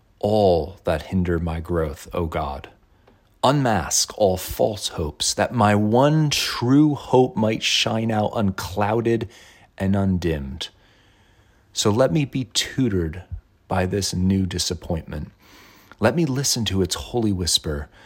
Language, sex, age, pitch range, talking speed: English, male, 40-59, 90-115 Hz, 125 wpm